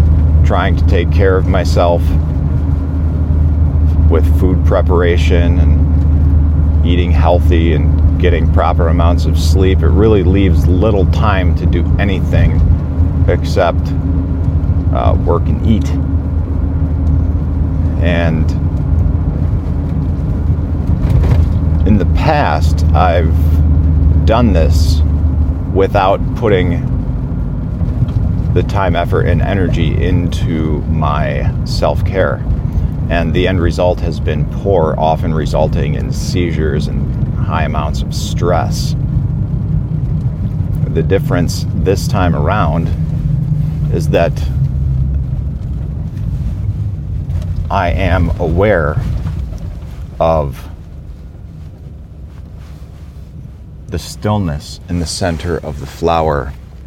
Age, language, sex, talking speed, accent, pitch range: 40-59, English, male, 90 wpm, American, 75-85 Hz